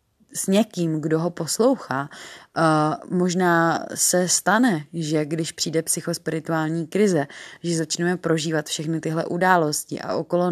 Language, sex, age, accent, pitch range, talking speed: Czech, female, 20-39, native, 160-175 Hz, 120 wpm